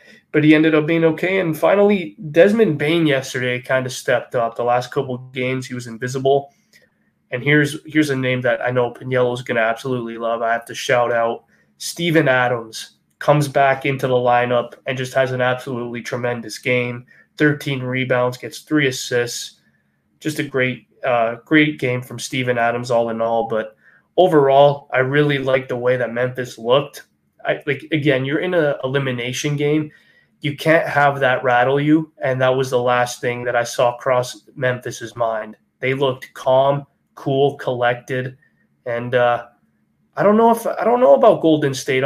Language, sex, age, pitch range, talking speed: English, male, 20-39, 125-150 Hz, 180 wpm